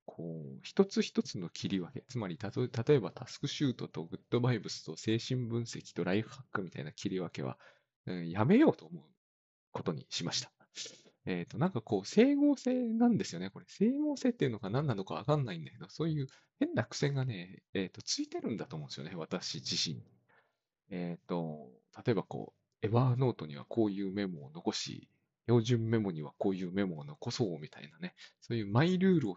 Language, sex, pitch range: Japanese, male, 95-160 Hz